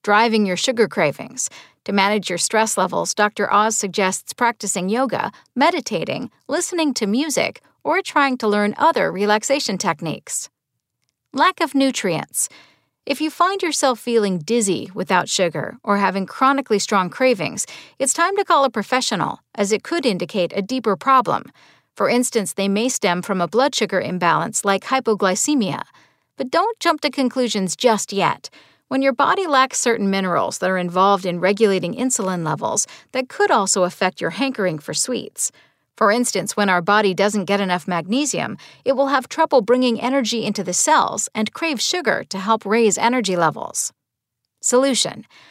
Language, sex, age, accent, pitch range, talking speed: English, female, 50-69, American, 195-265 Hz, 160 wpm